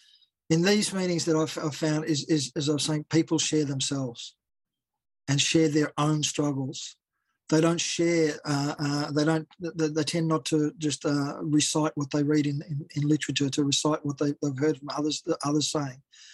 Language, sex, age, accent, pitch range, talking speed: English, male, 40-59, Australian, 150-175 Hz, 200 wpm